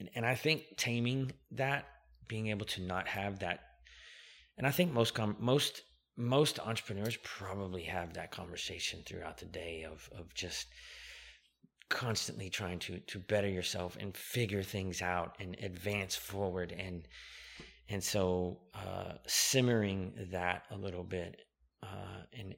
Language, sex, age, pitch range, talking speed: English, male, 30-49, 90-110 Hz, 140 wpm